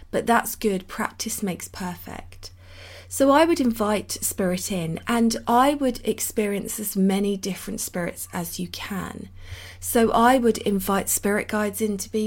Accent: British